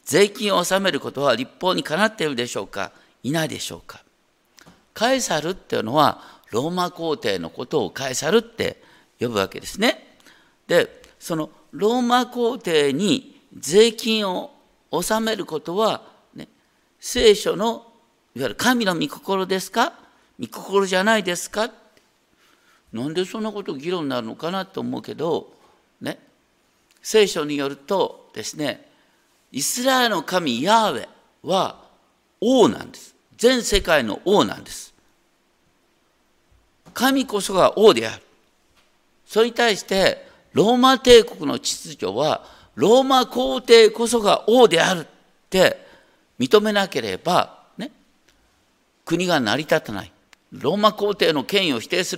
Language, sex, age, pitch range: Japanese, male, 50-69, 175-245 Hz